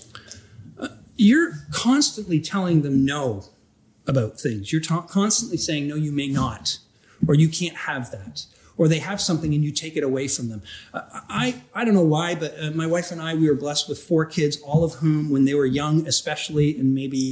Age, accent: 40-59, American